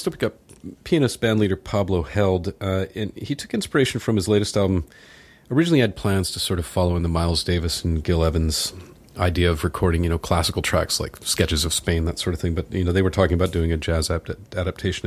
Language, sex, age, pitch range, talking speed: English, male, 40-59, 85-100 Hz, 230 wpm